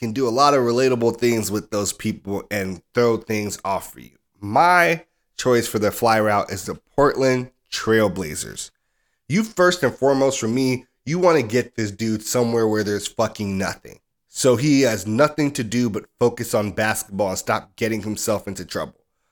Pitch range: 110-130 Hz